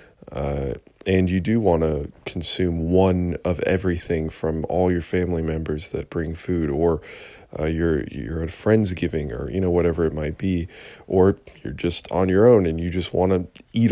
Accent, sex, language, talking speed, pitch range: American, male, English, 185 wpm, 80-95 Hz